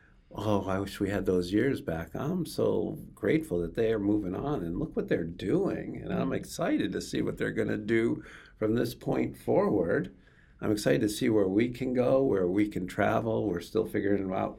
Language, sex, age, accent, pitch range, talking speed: English, male, 50-69, American, 90-115 Hz, 210 wpm